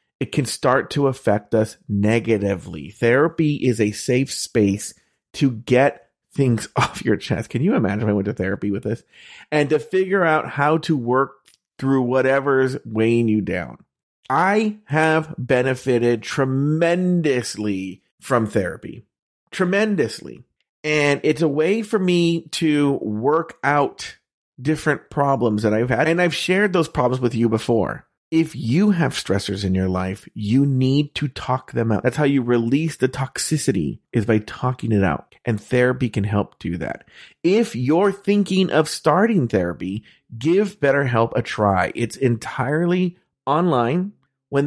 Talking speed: 150 wpm